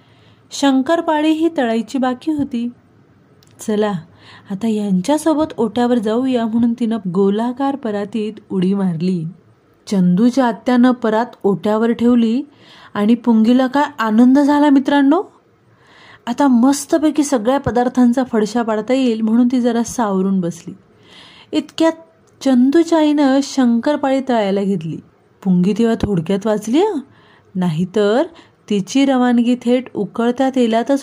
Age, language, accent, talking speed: 30-49, Marathi, native, 105 wpm